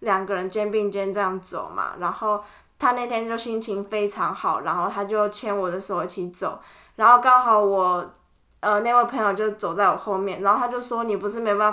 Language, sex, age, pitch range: Chinese, female, 10-29, 190-220 Hz